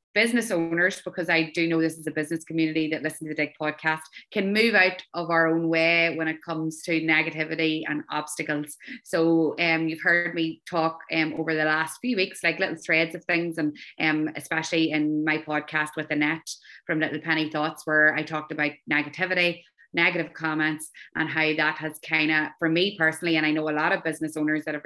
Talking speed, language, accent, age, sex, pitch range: 210 wpm, English, Irish, 20-39, female, 155-175 Hz